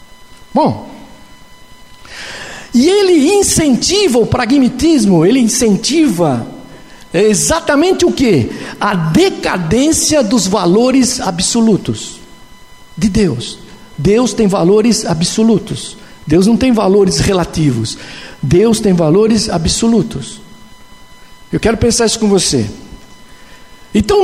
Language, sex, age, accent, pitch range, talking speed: Portuguese, male, 60-79, Brazilian, 205-315 Hz, 95 wpm